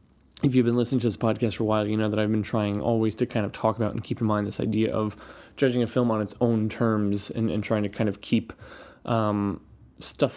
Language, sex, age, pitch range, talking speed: English, male, 20-39, 110-125 Hz, 260 wpm